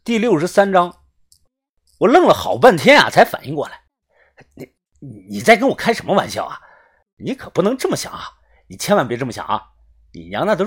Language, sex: Chinese, male